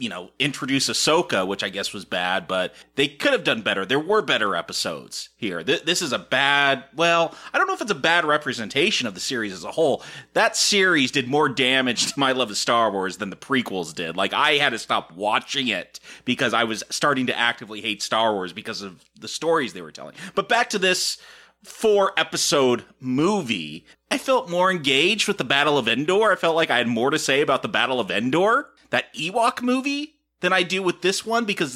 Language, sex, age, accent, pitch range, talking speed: English, male, 30-49, American, 130-210 Hz, 220 wpm